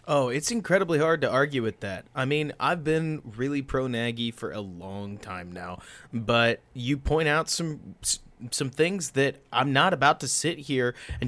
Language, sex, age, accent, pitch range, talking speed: English, male, 20-39, American, 120-150 Hz, 185 wpm